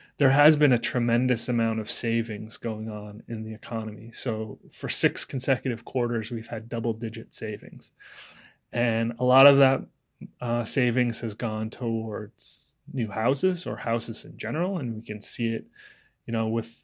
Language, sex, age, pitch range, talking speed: English, male, 30-49, 115-125 Hz, 170 wpm